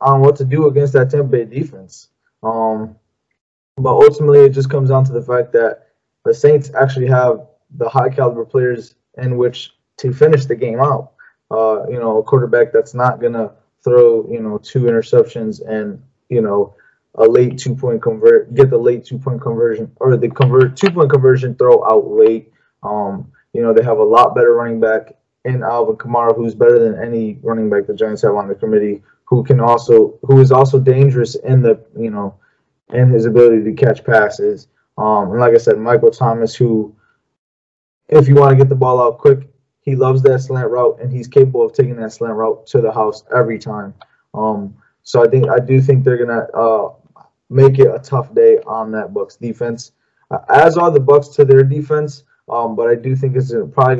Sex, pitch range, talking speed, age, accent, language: male, 115-145 Hz, 200 wpm, 20-39, American, English